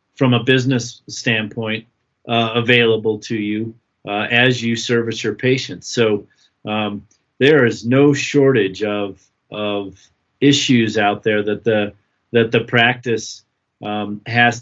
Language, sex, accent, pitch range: English, male, American, 110-125 Hz